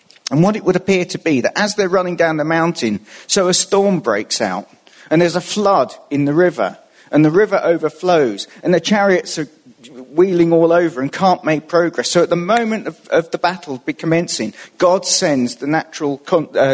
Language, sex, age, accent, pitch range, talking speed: English, male, 40-59, British, 120-175 Hz, 200 wpm